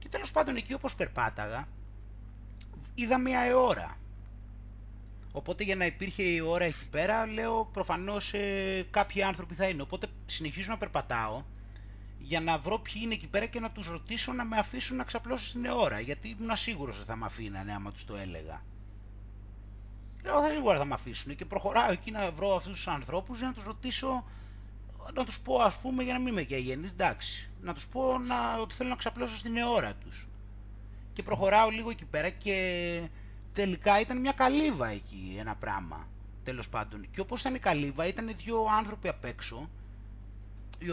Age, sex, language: 30-49, male, Greek